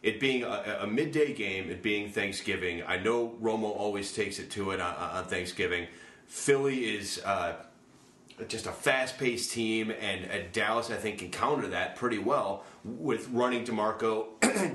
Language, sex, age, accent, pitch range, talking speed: English, male, 30-49, American, 105-130 Hz, 165 wpm